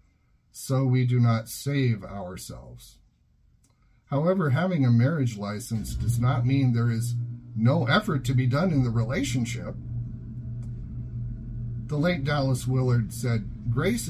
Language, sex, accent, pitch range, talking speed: English, male, American, 115-130 Hz, 130 wpm